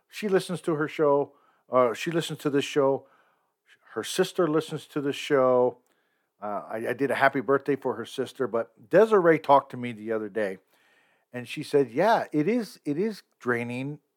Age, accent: 50-69, American